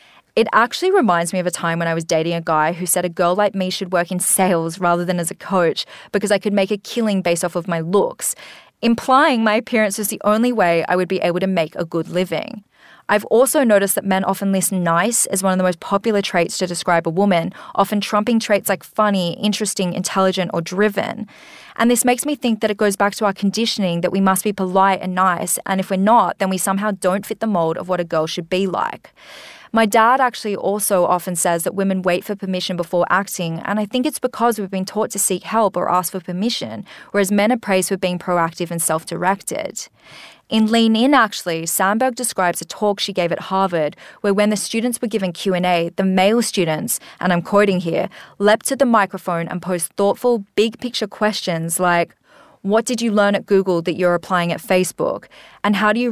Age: 20-39